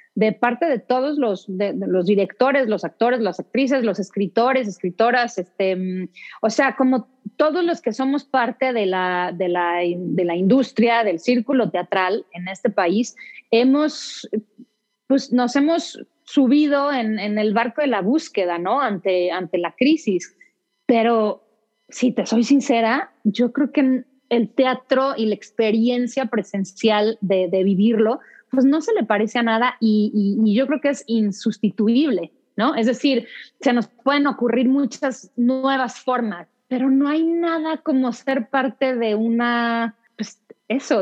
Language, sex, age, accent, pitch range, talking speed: Spanish, female, 30-49, Mexican, 200-255 Hz, 160 wpm